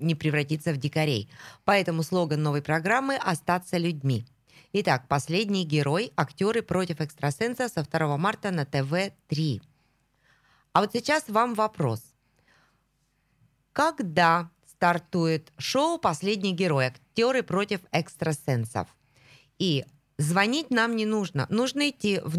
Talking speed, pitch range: 115 wpm, 145-200 Hz